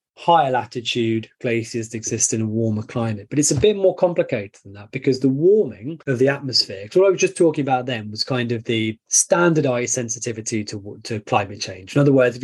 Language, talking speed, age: English, 210 wpm, 20-39